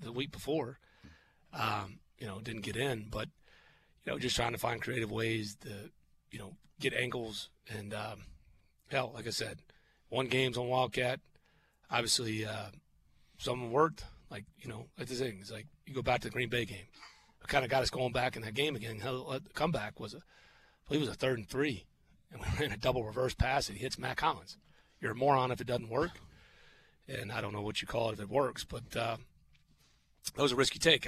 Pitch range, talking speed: 105-125 Hz, 225 wpm